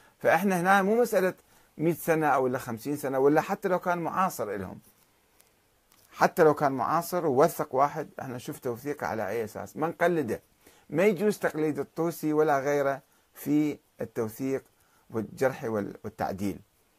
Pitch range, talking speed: 130-175 Hz, 140 wpm